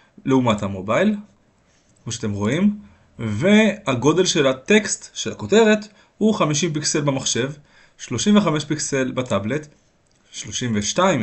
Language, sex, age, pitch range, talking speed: Hebrew, male, 20-39, 110-165 Hz, 95 wpm